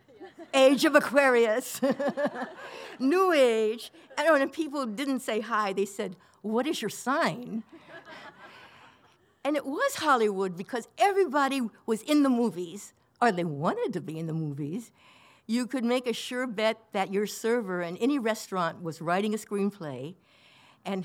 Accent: American